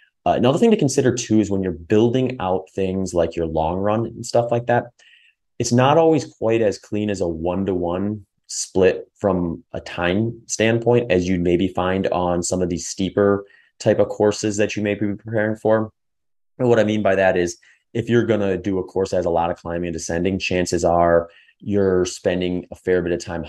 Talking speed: 215 wpm